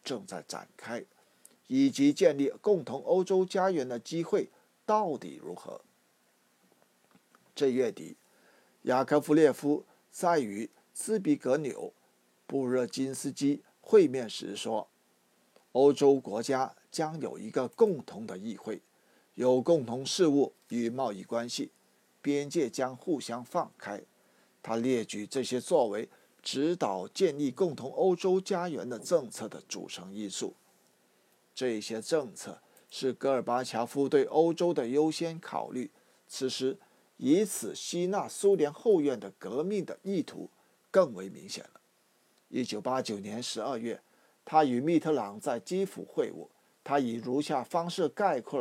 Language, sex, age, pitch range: Chinese, male, 50-69, 125-175 Hz